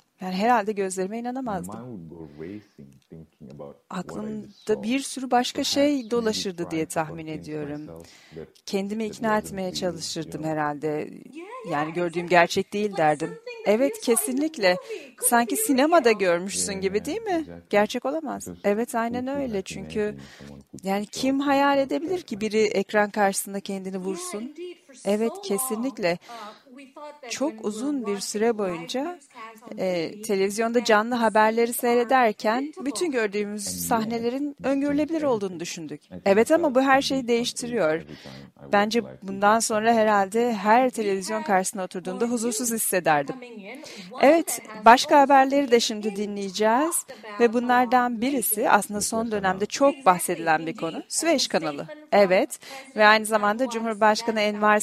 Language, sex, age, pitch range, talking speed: Turkish, female, 40-59, 195-250 Hz, 115 wpm